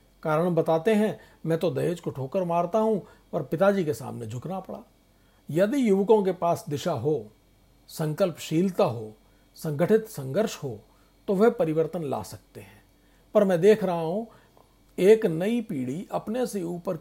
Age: 50-69